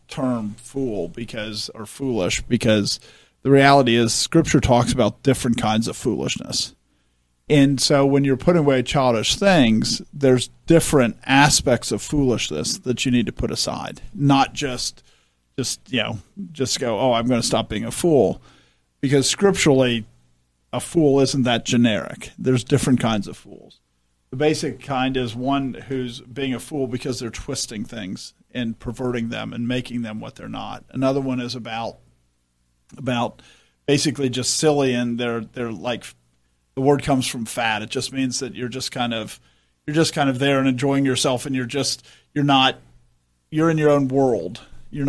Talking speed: 170 wpm